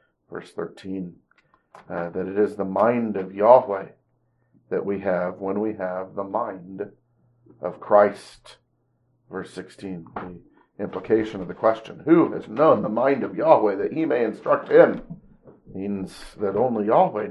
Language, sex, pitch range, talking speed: English, male, 95-105 Hz, 150 wpm